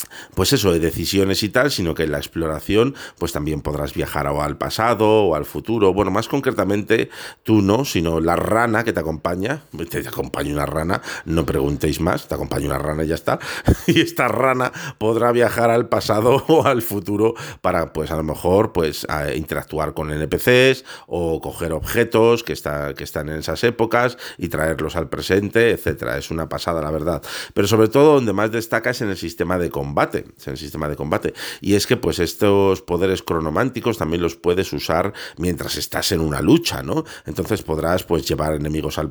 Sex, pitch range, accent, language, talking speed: male, 80-110 Hz, Spanish, Spanish, 190 wpm